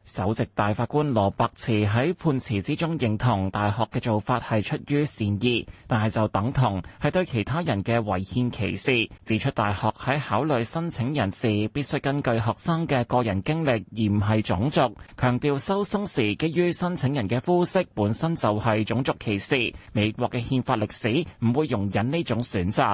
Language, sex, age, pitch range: Chinese, male, 20-39, 110-145 Hz